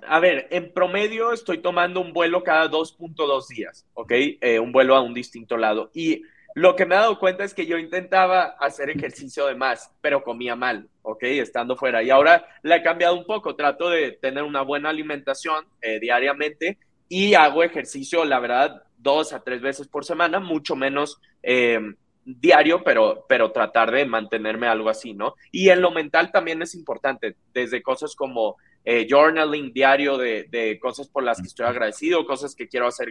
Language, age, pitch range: Spanish, 30-49, 125-170 Hz